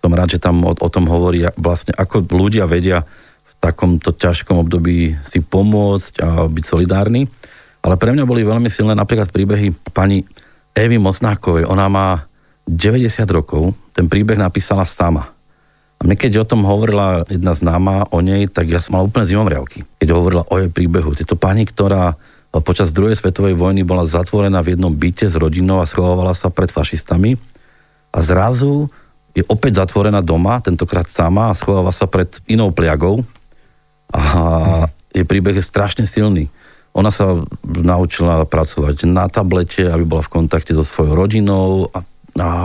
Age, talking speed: 40-59, 160 wpm